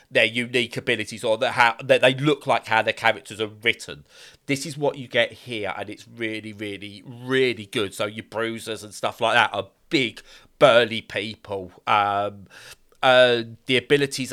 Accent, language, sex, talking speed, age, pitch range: British, English, male, 170 wpm, 30-49, 105-130 Hz